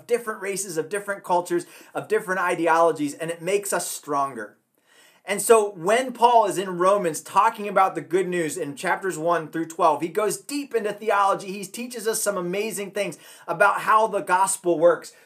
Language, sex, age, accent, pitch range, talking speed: English, male, 30-49, American, 175-220 Hz, 180 wpm